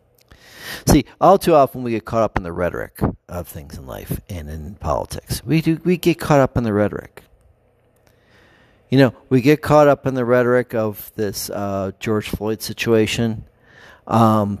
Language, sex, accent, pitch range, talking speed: English, male, American, 100-125 Hz, 175 wpm